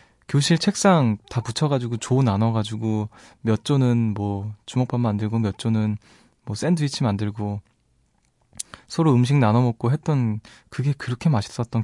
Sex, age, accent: male, 20-39, native